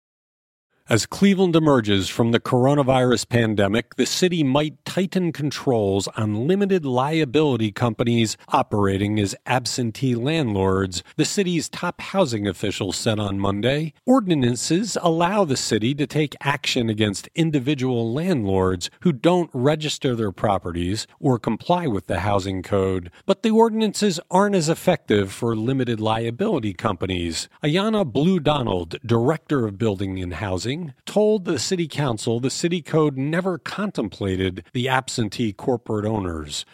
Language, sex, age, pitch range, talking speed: English, male, 40-59, 105-160 Hz, 130 wpm